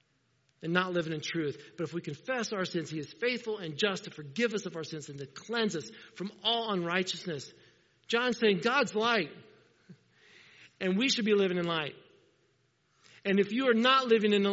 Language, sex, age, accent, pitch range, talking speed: English, male, 50-69, American, 150-195 Hz, 200 wpm